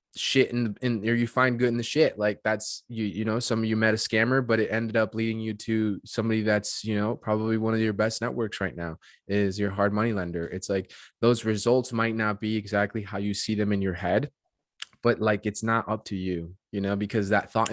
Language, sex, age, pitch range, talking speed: English, male, 20-39, 105-120 Hz, 245 wpm